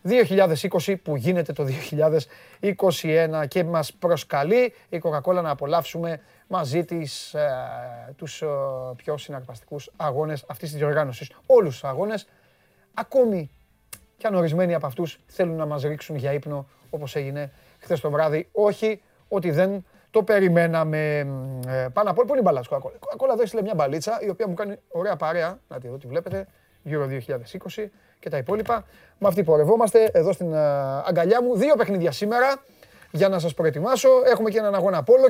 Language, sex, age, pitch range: Greek, male, 30-49, 150-200 Hz